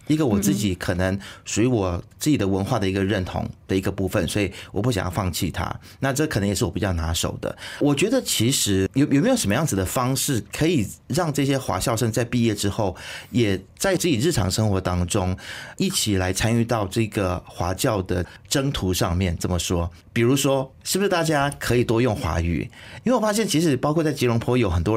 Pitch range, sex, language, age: 100-145 Hz, male, Chinese, 30-49